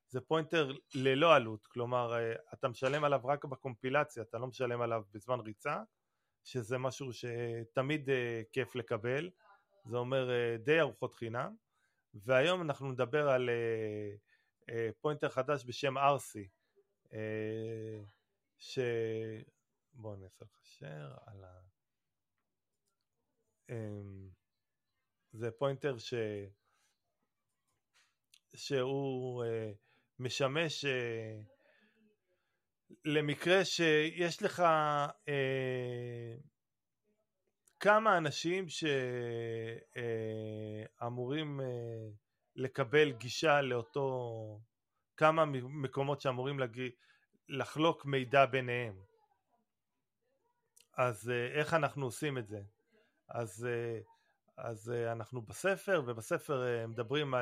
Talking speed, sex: 80 wpm, male